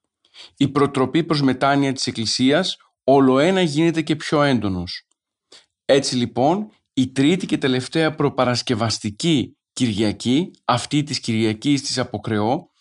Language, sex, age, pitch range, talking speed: Greek, male, 40-59, 125-160 Hz, 115 wpm